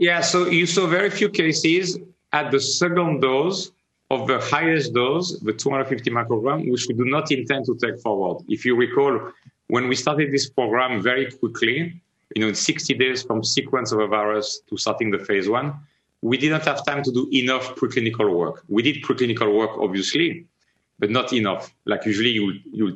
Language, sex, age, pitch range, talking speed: English, male, 40-59, 110-145 Hz, 185 wpm